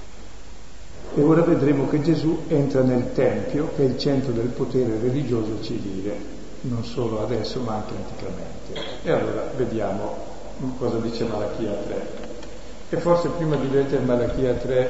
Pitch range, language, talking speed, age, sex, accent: 110-135 Hz, Italian, 145 wpm, 50-69, male, native